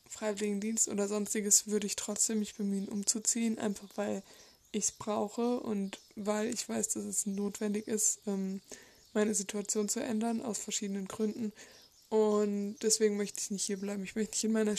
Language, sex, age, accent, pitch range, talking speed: German, female, 20-39, German, 205-220 Hz, 165 wpm